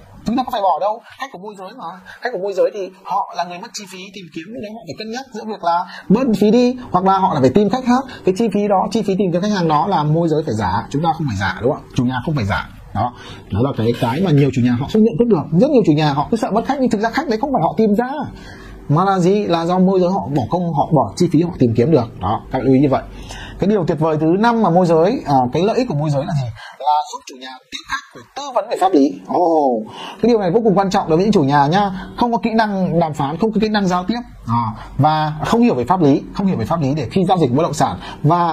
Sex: male